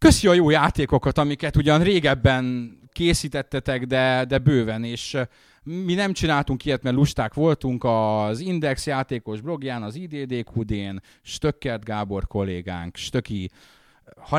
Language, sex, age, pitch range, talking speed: Hungarian, male, 30-49, 100-140 Hz, 130 wpm